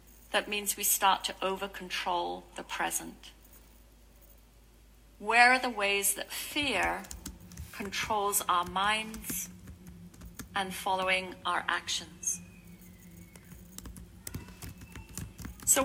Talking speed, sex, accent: 85 wpm, female, British